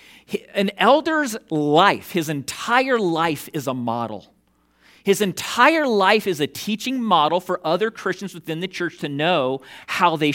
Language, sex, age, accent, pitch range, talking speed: English, male, 40-59, American, 160-225 Hz, 150 wpm